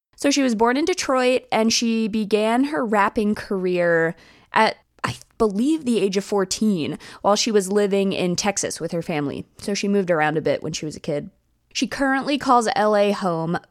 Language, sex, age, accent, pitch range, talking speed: English, female, 20-39, American, 170-220 Hz, 195 wpm